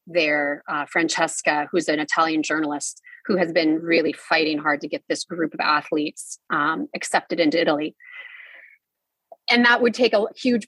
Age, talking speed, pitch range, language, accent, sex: 30-49, 165 wpm, 160-215 Hz, English, American, female